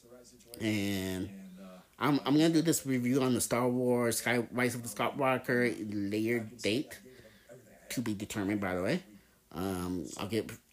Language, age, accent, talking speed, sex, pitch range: English, 30-49, American, 145 wpm, male, 105-130 Hz